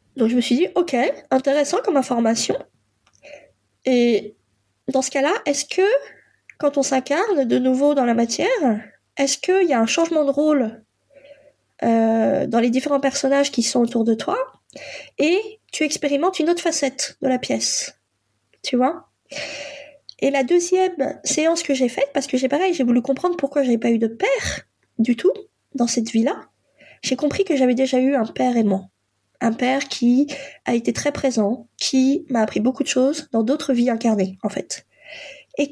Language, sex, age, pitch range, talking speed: French, female, 20-39, 250-310 Hz, 180 wpm